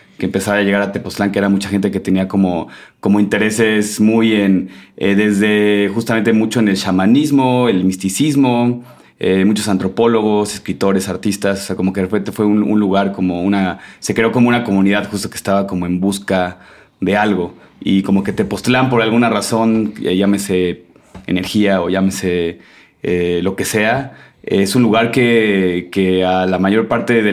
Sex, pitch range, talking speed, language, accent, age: male, 95-110 Hz, 180 wpm, Spanish, Mexican, 30-49